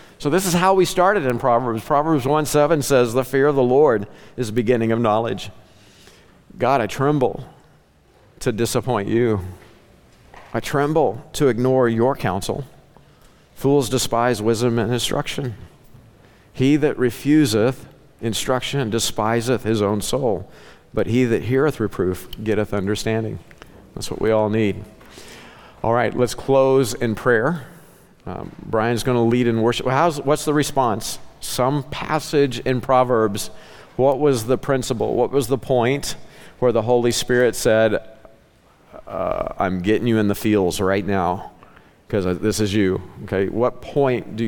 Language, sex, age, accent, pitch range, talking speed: English, male, 50-69, American, 110-130 Hz, 145 wpm